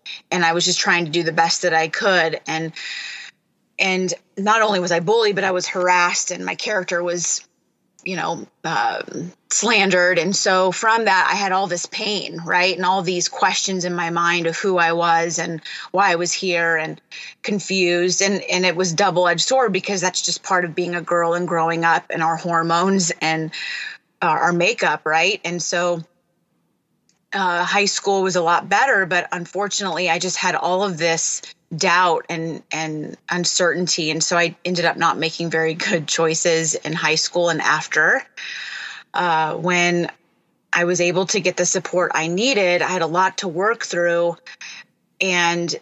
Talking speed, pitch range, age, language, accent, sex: 180 wpm, 165-185 Hz, 30-49, English, American, female